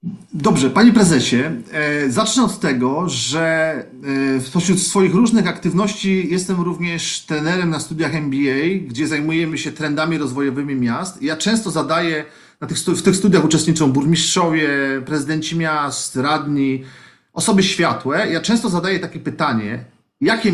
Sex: male